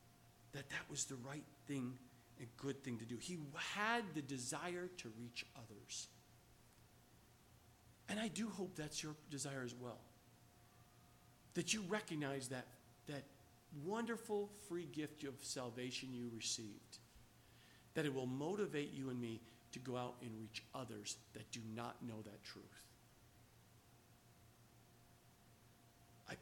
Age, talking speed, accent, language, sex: 50-69, 135 wpm, American, English, male